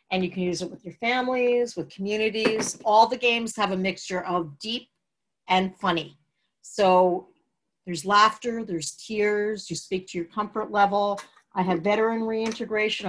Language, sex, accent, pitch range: English, female, American, 165-210 Hz